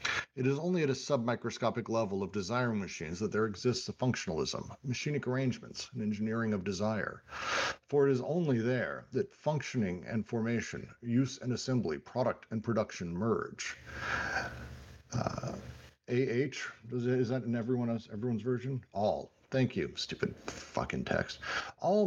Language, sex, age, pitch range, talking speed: English, male, 50-69, 110-135 Hz, 140 wpm